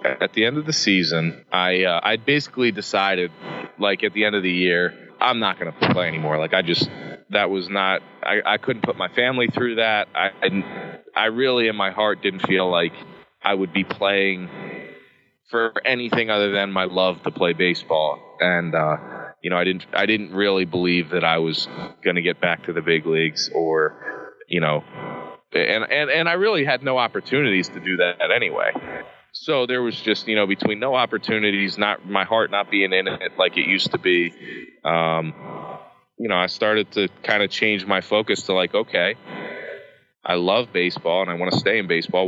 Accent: American